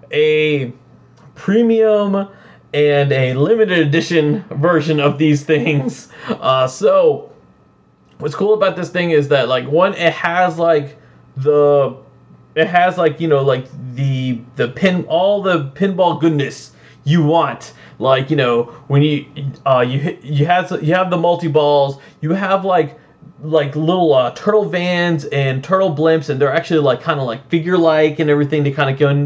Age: 20-39